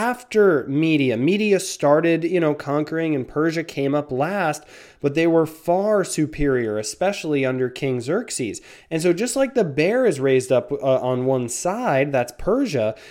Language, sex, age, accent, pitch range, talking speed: English, male, 20-39, American, 140-190 Hz, 165 wpm